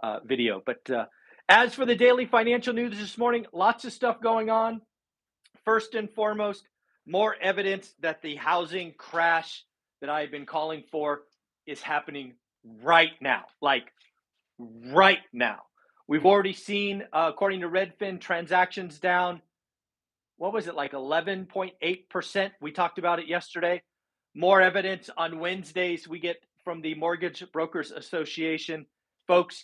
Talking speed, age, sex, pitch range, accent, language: 140 wpm, 40-59, male, 160-205 Hz, American, English